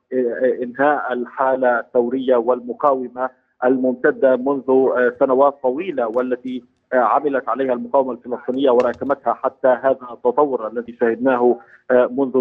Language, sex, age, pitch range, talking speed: Arabic, male, 50-69, 125-135 Hz, 95 wpm